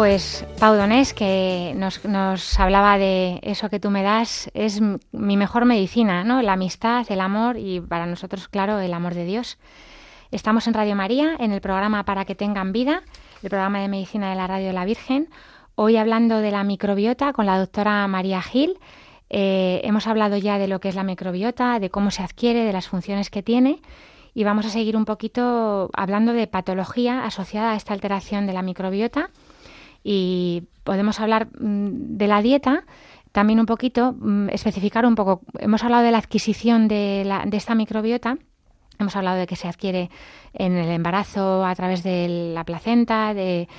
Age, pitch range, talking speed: 20-39, 185-225 Hz, 185 wpm